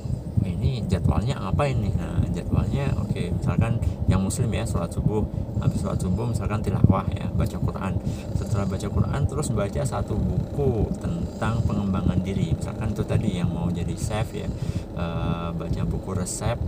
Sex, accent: male, native